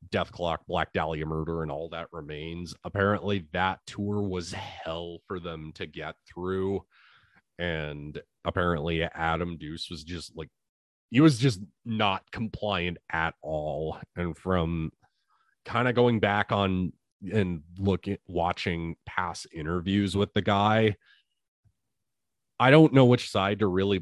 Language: English